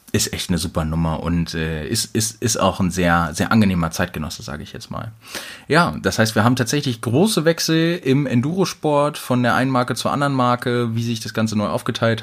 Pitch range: 95-125 Hz